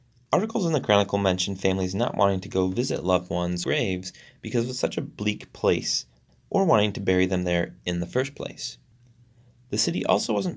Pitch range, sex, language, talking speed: 95-125 Hz, male, English, 195 wpm